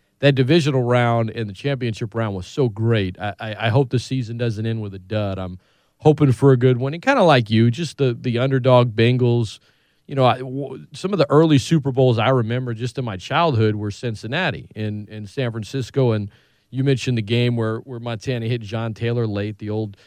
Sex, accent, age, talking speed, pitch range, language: male, American, 40-59, 220 wpm, 115-145 Hz, English